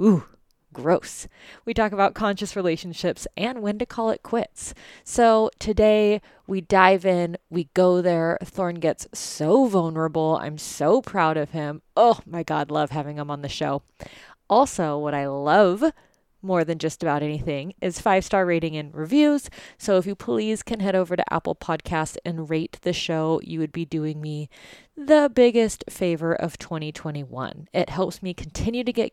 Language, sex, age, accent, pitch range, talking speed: English, female, 20-39, American, 165-215 Hz, 170 wpm